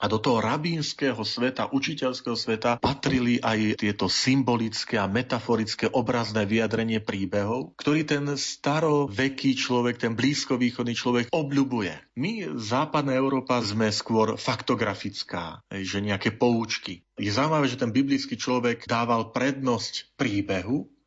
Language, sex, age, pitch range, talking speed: Slovak, male, 40-59, 110-135 Hz, 120 wpm